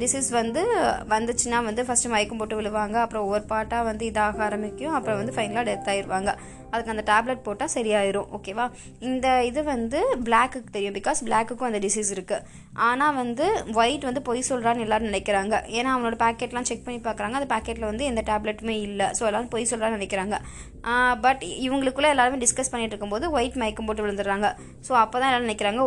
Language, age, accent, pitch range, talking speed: Tamil, 20-39, native, 215-245 Hz, 175 wpm